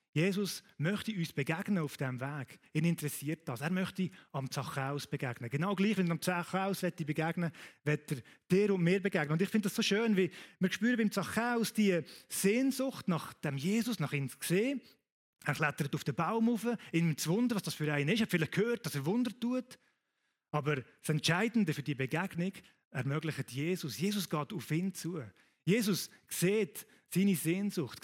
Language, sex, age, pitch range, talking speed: German, male, 30-49, 155-200 Hz, 185 wpm